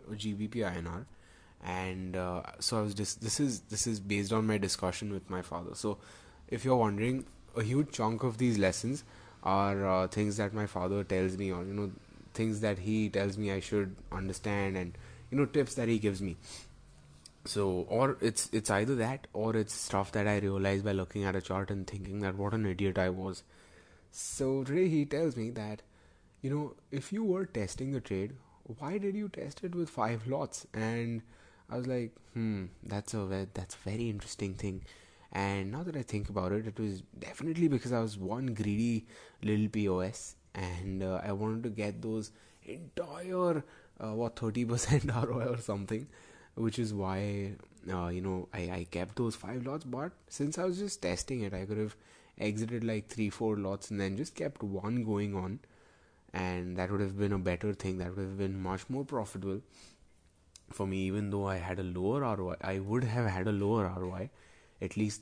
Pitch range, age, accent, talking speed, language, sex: 95-115 Hz, 20-39, Indian, 195 wpm, English, male